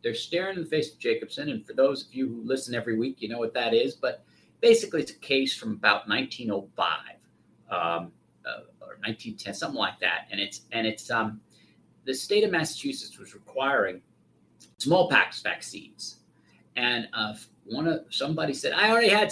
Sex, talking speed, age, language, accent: male, 180 wpm, 50-69, English, American